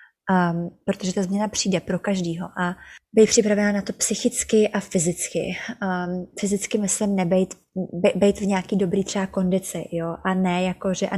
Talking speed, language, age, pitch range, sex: 165 wpm, Czech, 20-39, 180-205 Hz, female